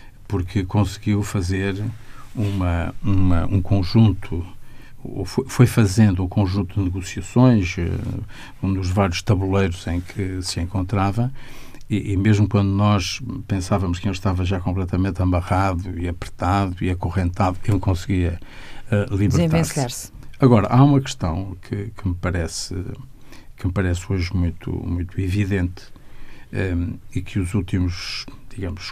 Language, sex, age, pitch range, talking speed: Portuguese, male, 50-69, 95-115 Hz, 135 wpm